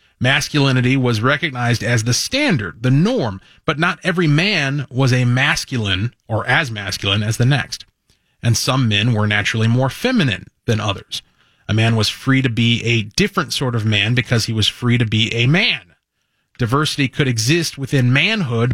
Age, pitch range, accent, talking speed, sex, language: 30-49, 115-165 Hz, American, 175 wpm, male, English